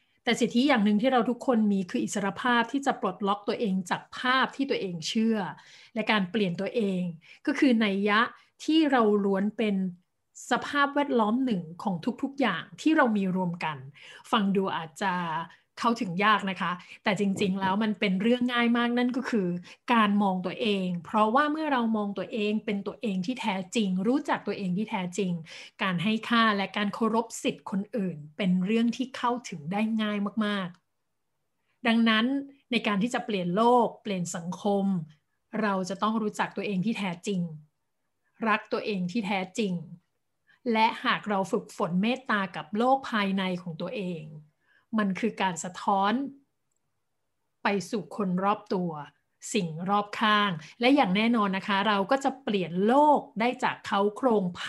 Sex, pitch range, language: female, 195-235 Hz, Thai